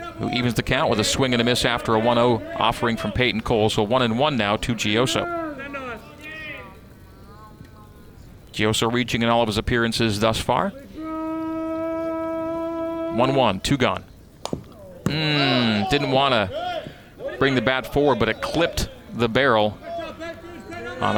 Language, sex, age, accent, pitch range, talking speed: English, male, 40-59, American, 110-145 Hz, 140 wpm